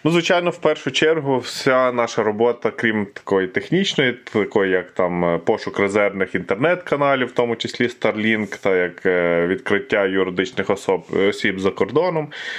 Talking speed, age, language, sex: 135 wpm, 20-39, Ukrainian, male